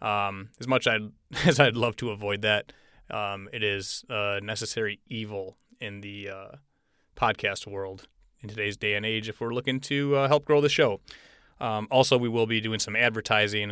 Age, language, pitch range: 30-49, English, 105-135 Hz